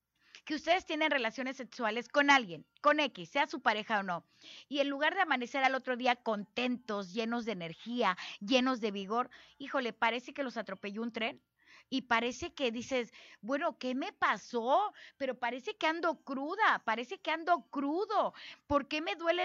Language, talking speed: Spanish, 175 wpm